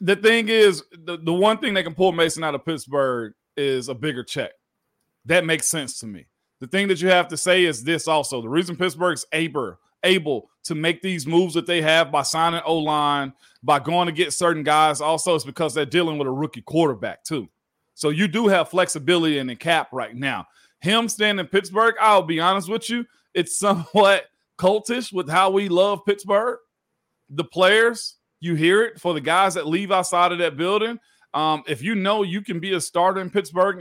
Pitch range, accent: 155-195 Hz, American